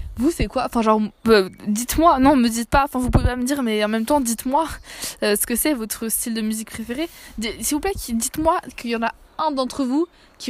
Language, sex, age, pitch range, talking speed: French, female, 20-39, 210-270 Hz, 250 wpm